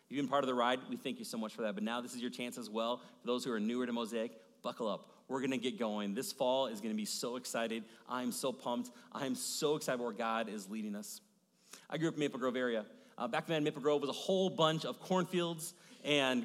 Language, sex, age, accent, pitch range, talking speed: English, male, 30-49, American, 130-175 Hz, 270 wpm